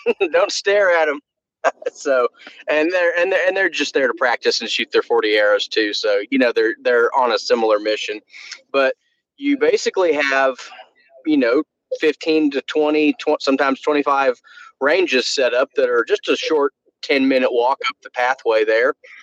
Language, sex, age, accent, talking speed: English, male, 30-49, American, 180 wpm